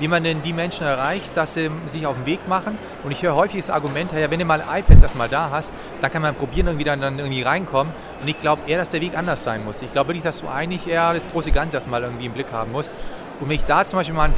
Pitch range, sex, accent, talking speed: 140-170 Hz, male, German, 295 wpm